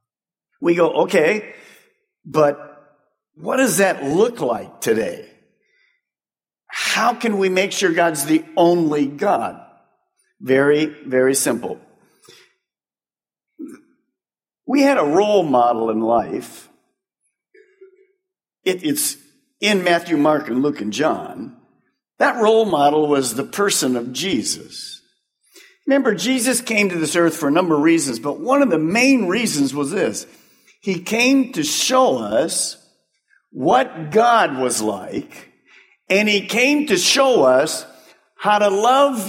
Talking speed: 125 wpm